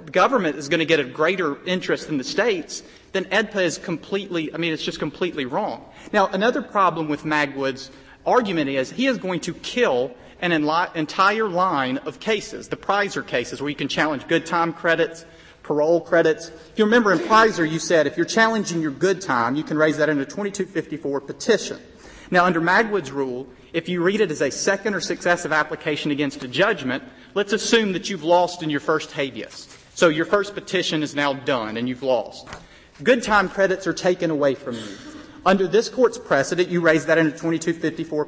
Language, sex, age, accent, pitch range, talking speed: English, male, 40-59, American, 155-195 Hz, 195 wpm